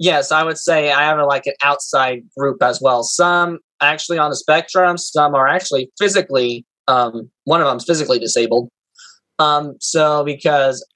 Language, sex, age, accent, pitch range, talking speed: English, male, 20-39, American, 130-160 Hz, 165 wpm